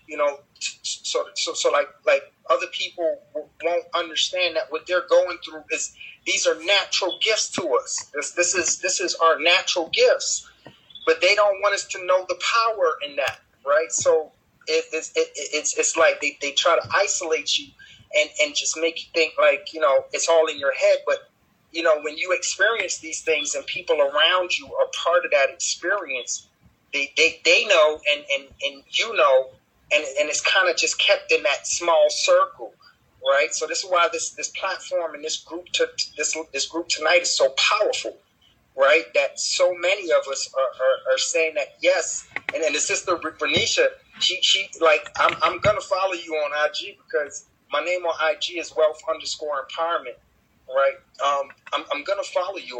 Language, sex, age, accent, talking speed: English, male, 30-49, American, 190 wpm